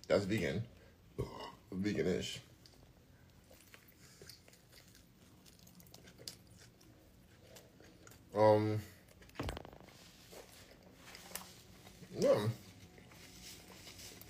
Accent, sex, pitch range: American, male, 105-125 Hz